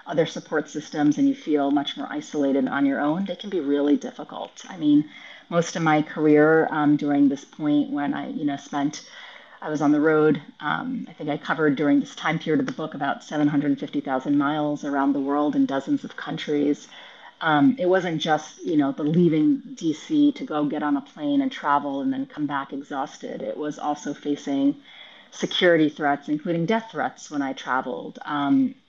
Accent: American